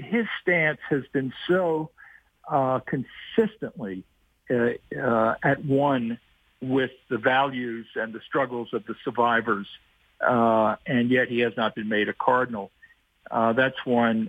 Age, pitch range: 50-69, 120-160 Hz